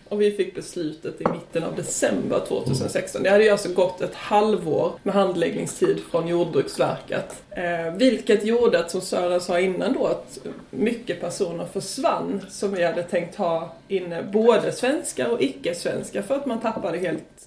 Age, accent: 20-39, Swedish